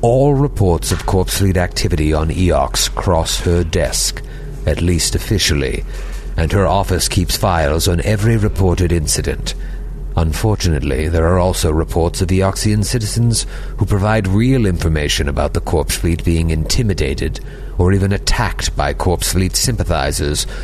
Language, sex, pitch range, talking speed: English, male, 80-105 Hz, 140 wpm